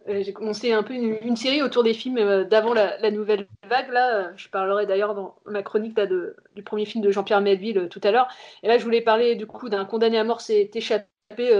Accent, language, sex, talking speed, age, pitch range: French, French, female, 240 wpm, 30-49, 195-225 Hz